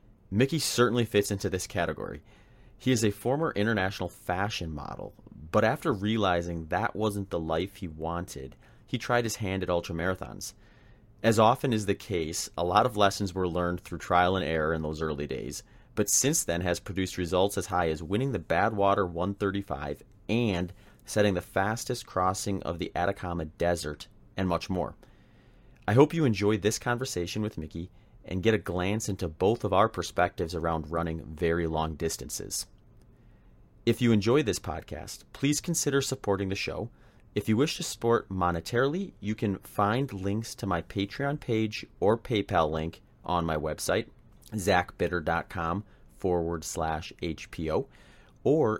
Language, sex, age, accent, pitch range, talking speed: English, male, 30-49, American, 85-110 Hz, 160 wpm